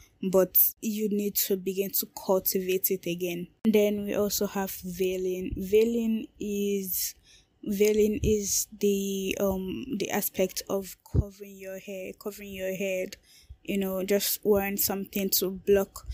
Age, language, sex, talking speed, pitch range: 10-29, English, female, 140 wpm, 195-215 Hz